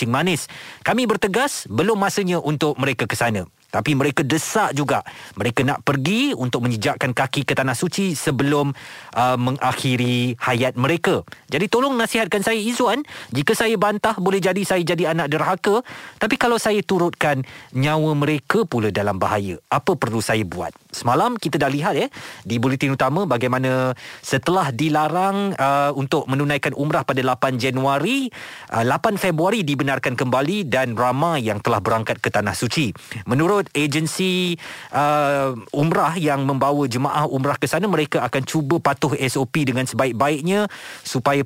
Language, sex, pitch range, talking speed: Malay, male, 125-175 Hz, 150 wpm